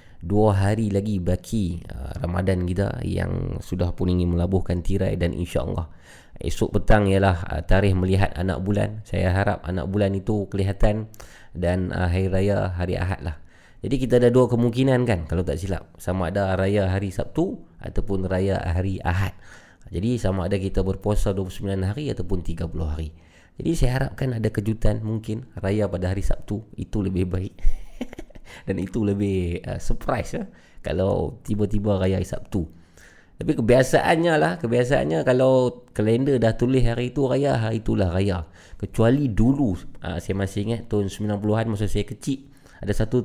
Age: 20-39